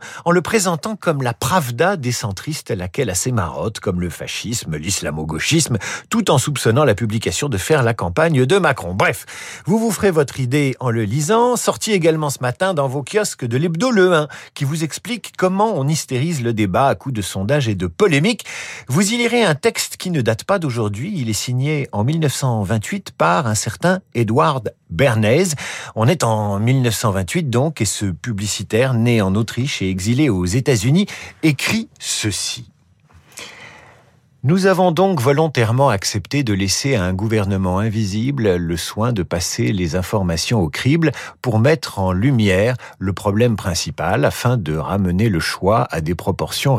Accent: French